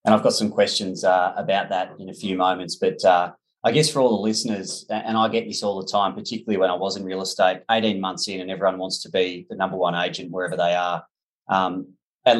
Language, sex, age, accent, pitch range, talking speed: English, male, 20-39, Australian, 95-110 Hz, 245 wpm